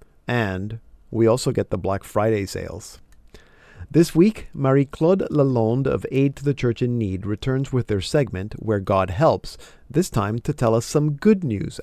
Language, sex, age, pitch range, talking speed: English, male, 40-59, 105-135 Hz, 175 wpm